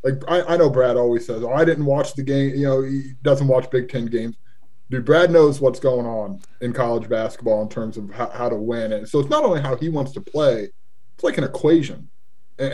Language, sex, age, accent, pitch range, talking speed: English, male, 20-39, American, 120-150 Hz, 245 wpm